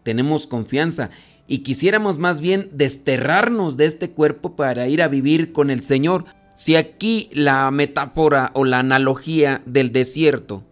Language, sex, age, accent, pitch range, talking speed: Spanish, male, 40-59, Mexican, 130-160 Hz, 145 wpm